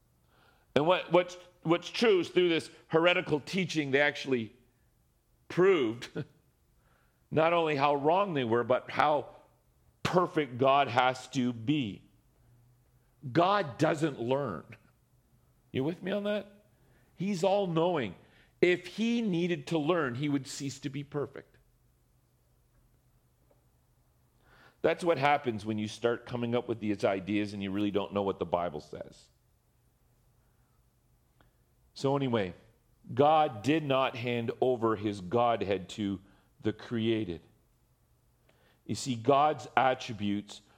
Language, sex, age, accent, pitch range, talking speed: English, male, 40-59, American, 115-155 Hz, 120 wpm